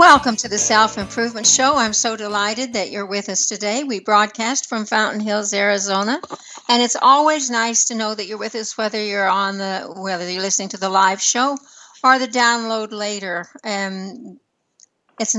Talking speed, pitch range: 180 wpm, 200-245 Hz